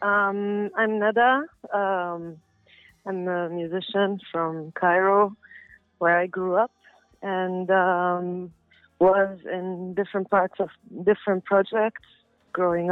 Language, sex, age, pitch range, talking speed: English, female, 30-49, 180-210 Hz, 105 wpm